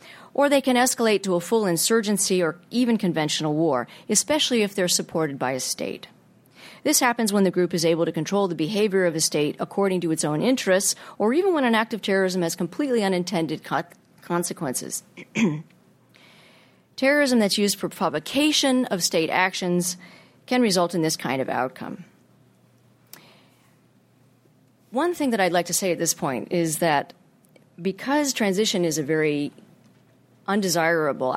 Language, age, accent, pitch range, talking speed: English, 40-59, American, 155-205 Hz, 155 wpm